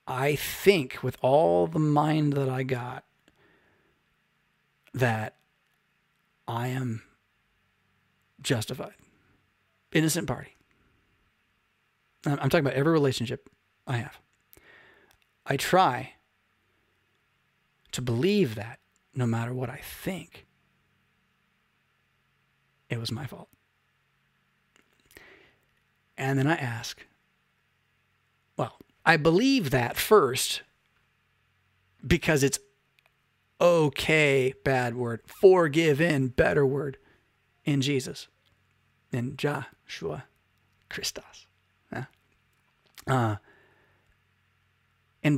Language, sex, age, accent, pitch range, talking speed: English, male, 40-59, American, 110-145 Hz, 80 wpm